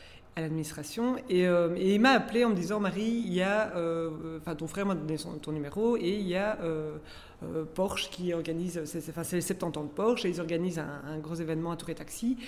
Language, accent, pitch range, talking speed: French, French, 160-205 Hz, 245 wpm